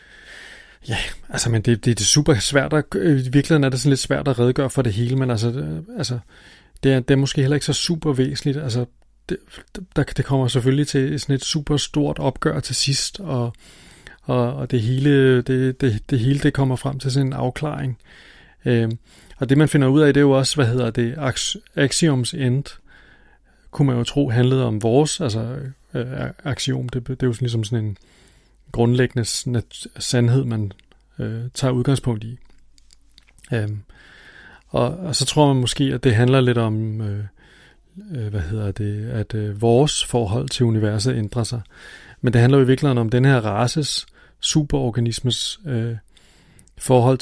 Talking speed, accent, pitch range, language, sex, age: 165 wpm, native, 115-140 Hz, Danish, male, 30-49